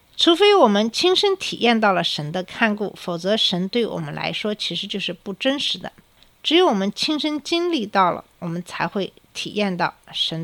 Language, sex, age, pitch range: Chinese, female, 50-69, 185-240 Hz